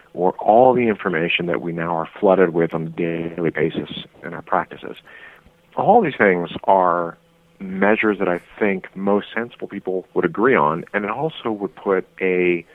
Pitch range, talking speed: 90-105 Hz, 175 wpm